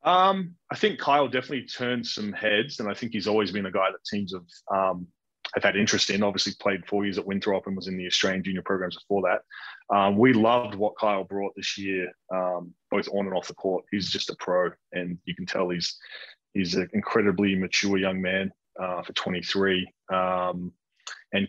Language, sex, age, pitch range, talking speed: English, male, 20-39, 90-105 Hz, 205 wpm